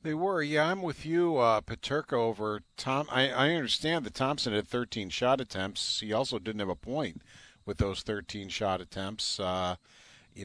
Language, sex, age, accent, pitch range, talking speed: English, male, 50-69, American, 100-125 Hz, 185 wpm